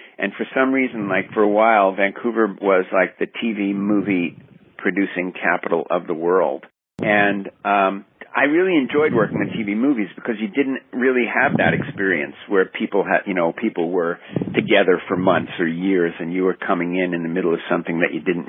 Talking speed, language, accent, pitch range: 195 wpm, English, American, 90-110 Hz